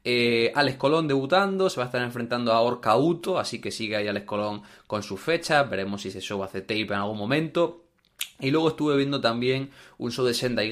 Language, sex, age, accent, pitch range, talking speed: Spanish, male, 20-39, Spanish, 110-135 Hz, 215 wpm